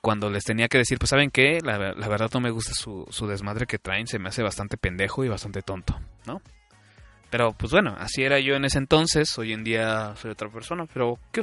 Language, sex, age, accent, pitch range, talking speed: Spanish, male, 20-39, Mexican, 110-135 Hz, 235 wpm